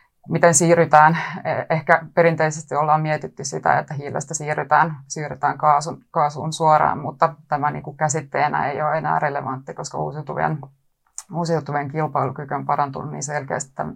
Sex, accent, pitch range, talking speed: female, native, 145-160 Hz, 135 wpm